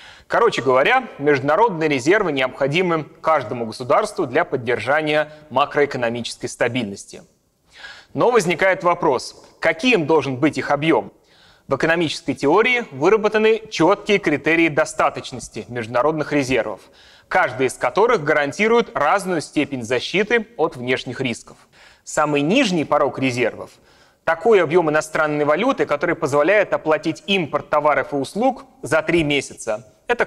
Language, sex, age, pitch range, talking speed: Russian, male, 30-49, 135-185 Hz, 115 wpm